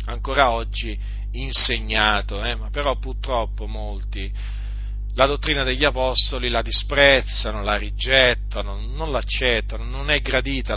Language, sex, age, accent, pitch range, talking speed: Italian, male, 40-59, native, 100-120 Hz, 115 wpm